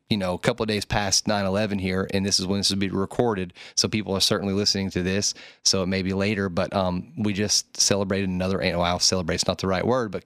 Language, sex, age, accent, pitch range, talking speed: English, male, 30-49, American, 95-110 Hz, 265 wpm